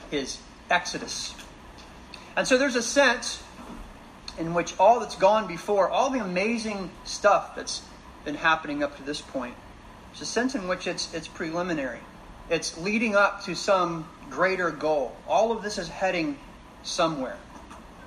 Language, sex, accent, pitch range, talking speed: English, male, American, 165-210 Hz, 150 wpm